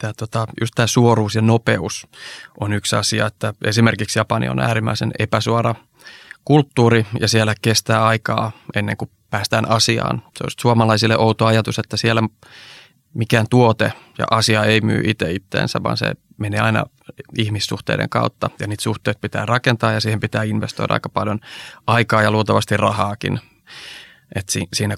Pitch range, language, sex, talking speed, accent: 105-115 Hz, Finnish, male, 150 wpm, native